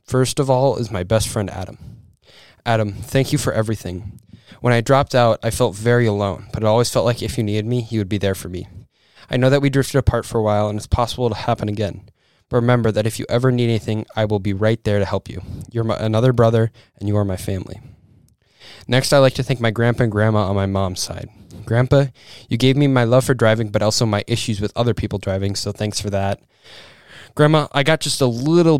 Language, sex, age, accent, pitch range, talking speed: English, male, 10-29, American, 105-125 Hz, 240 wpm